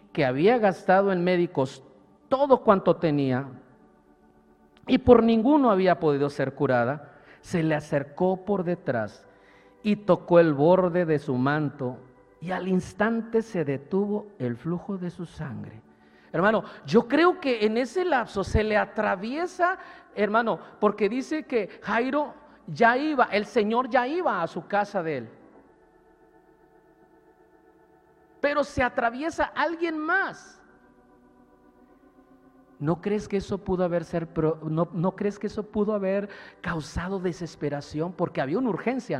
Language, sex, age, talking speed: Spanish, male, 50-69, 125 wpm